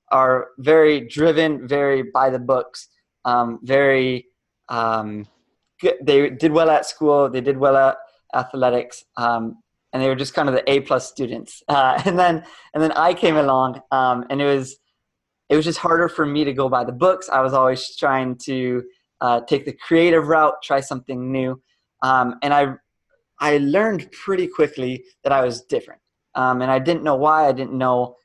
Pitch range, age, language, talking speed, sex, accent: 125-150 Hz, 20-39, English, 185 wpm, male, American